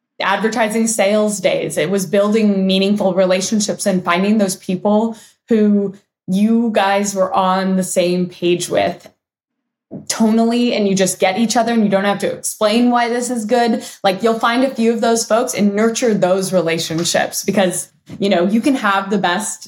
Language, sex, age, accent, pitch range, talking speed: English, female, 20-39, American, 185-225 Hz, 175 wpm